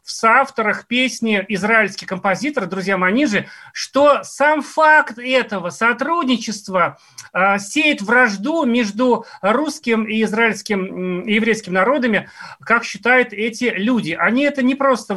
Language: Russian